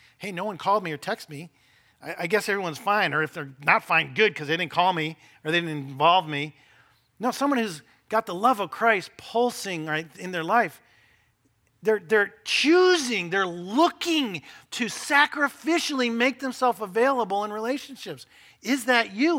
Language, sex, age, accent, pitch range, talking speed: English, male, 50-69, American, 160-240 Hz, 175 wpm